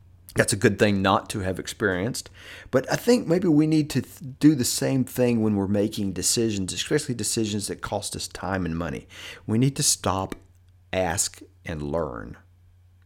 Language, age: English, 40-59